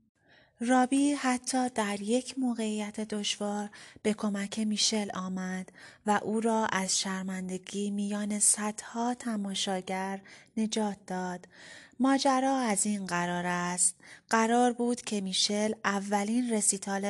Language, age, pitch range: Persian, 30-49, 190-225 Hz